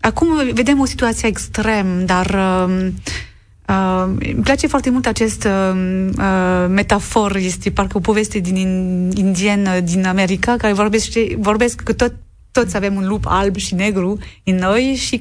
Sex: female